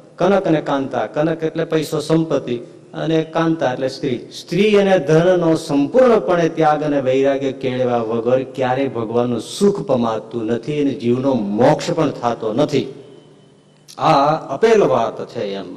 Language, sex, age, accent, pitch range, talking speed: Gujarati, male, 50-69, native, 125-165 Hz, 120 wpm